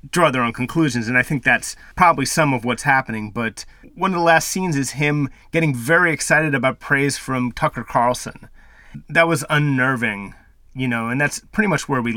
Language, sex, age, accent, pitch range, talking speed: English, male, 30-49, American, 130-170 Hz, 195 wpm